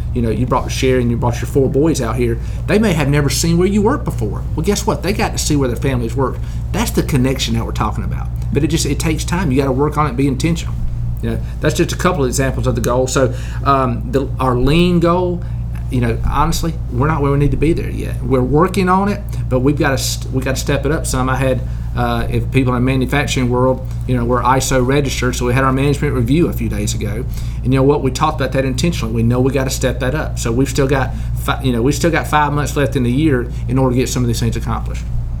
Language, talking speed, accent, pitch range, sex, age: English, 275 wpm, American, 115-145 Hz, male, 40-59